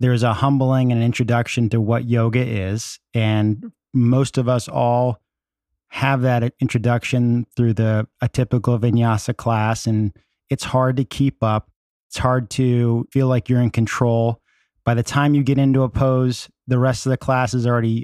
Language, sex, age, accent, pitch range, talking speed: English, male, 30-49, American, 115-135 Hz, 175 wpm